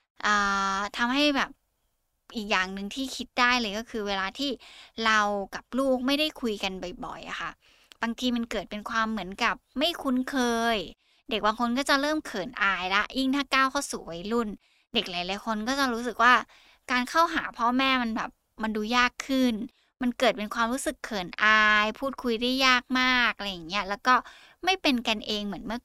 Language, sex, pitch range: Thai, female, 205-260 Hz